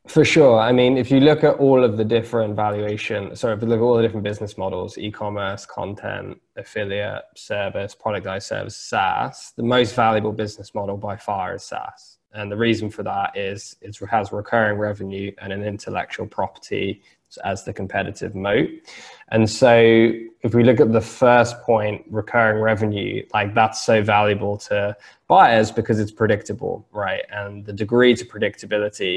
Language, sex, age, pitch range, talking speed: English, male, 10-29, 105-120 Hz, 175 wpm